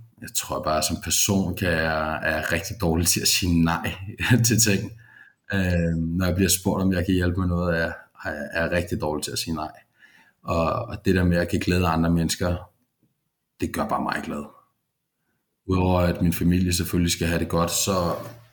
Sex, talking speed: male, 210 wpm